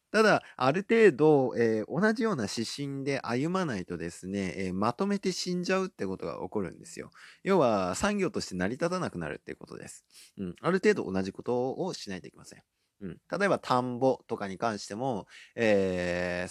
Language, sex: Japanese, male